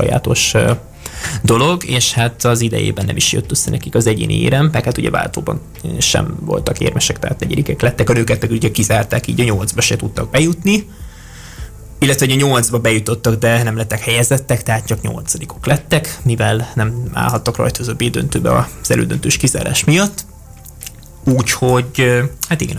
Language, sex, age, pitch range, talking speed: Hungarian, male, 20-39, 115-135 Hz, 155 wpm